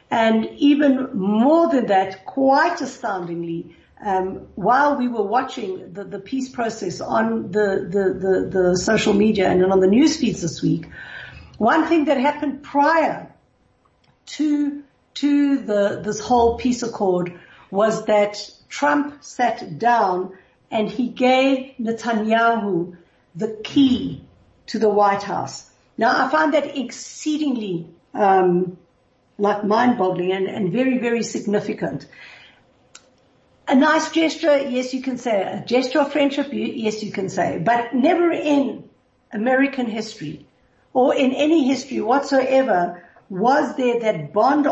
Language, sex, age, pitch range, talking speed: English, female, 60-79, 200-275 Hz, 135 wpm